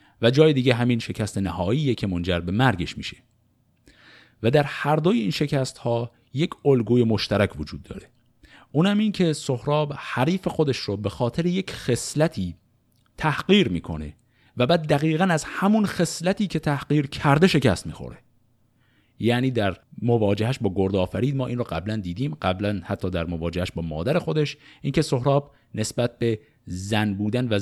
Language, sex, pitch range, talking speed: Persian, male, 100-130 Hz, 155 wpm